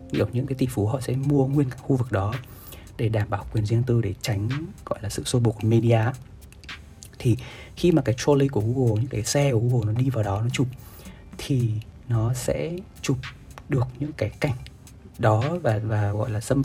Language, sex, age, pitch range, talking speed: Vietnamese, male, 20-39, 100-130 Hz, 215 wpm